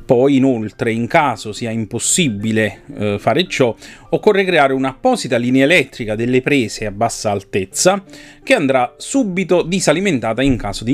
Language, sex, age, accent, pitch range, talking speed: Italian, male, 30-49, native, 115-145 Hz, 145 wpm